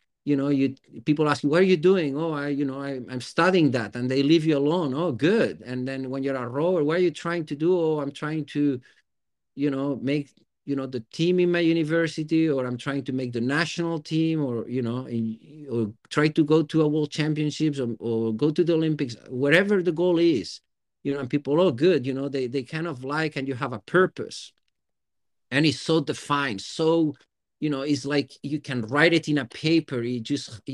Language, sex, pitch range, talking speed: English, male, 130-160 Hz, 230 wpm